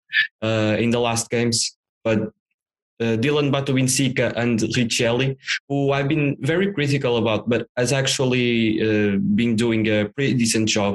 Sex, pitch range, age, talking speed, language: male, 110-140 Hz, 20-39, 150 wpm, English